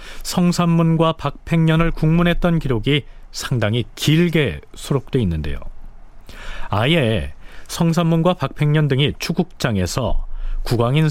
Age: 40-59